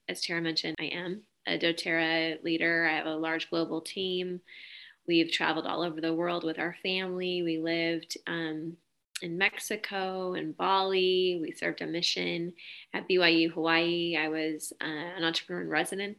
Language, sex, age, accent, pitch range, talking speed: English, female, 20-39, American, 165-185 Hz, 165 wpm